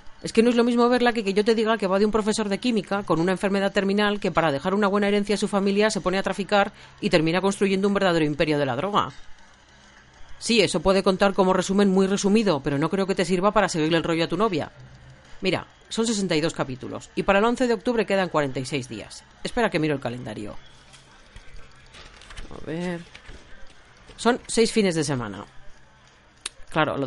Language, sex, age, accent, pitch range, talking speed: Spanish, female, 40-59, Spanish, 155-210 Hz, 205 wpm